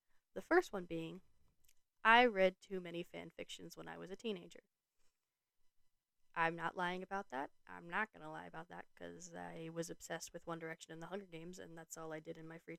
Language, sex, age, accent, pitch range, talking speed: English, female, 10-29, American, 170-215 Hz, 215 wpm